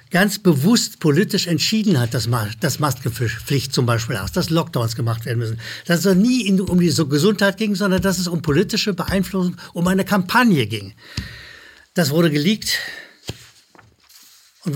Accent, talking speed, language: German, 155 wpm, German